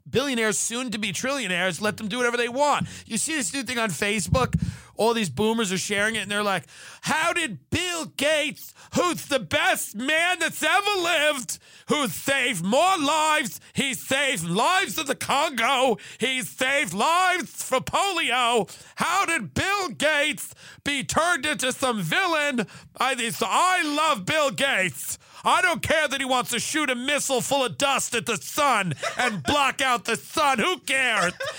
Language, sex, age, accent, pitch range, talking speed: English, male, 50-69, American, 225-295 Hz, 170 wpm